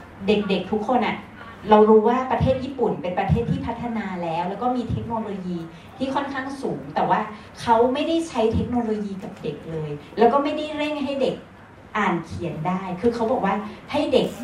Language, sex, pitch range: Thai, female, 185-245 Hz